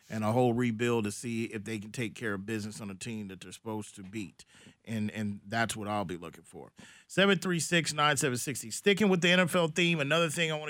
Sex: male